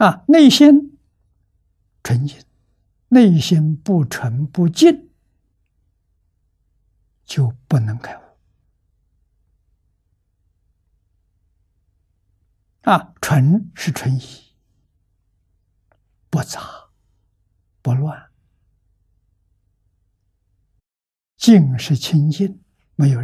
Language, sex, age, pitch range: Chinese, male, 60-79, 90-130 Hz